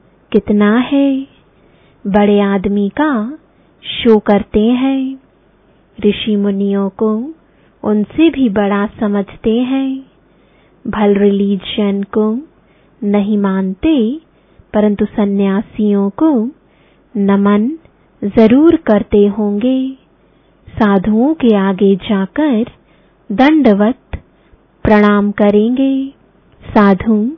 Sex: female